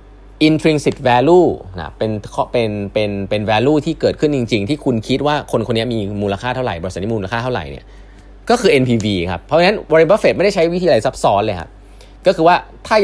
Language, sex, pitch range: Thai, male, 100-140 Hz